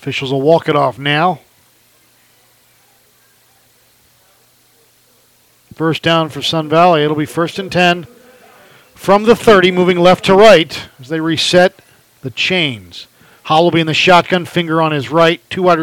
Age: 40-59